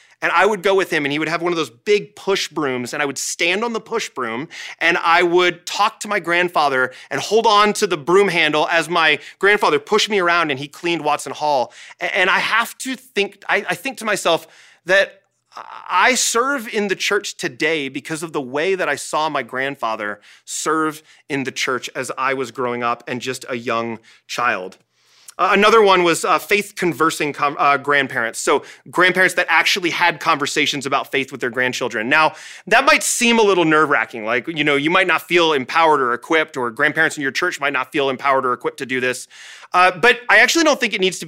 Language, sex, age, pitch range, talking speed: English, male, 30-49, 140-200 Hz, 210 wpm